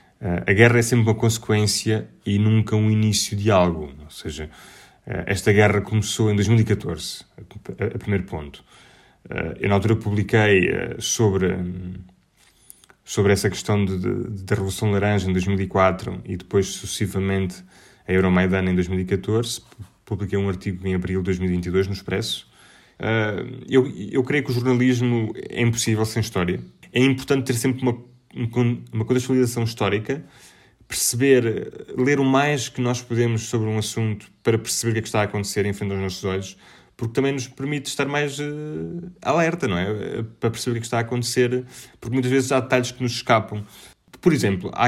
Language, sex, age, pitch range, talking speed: Portuguese, male, 20-39, 100-125 Hz, 165 wpm